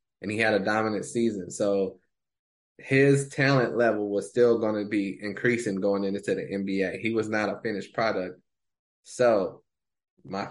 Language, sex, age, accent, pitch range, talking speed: English, male, 20-39, American, 110-130 Hz, 160 wpm